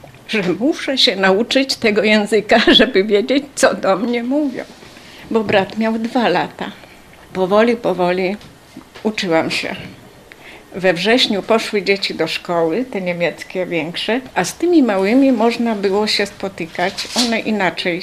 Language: Polish